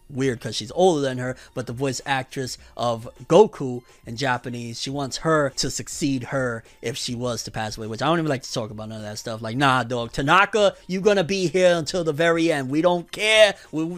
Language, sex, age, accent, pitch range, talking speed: English, male, 30-49, American, 130-185 Hz, 235 wpm